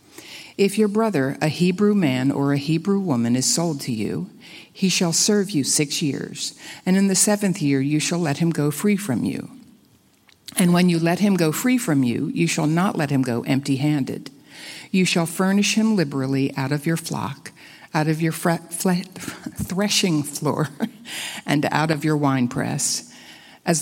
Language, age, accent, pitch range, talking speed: English, 60-79, American, 145-185 Hz, 175 wpm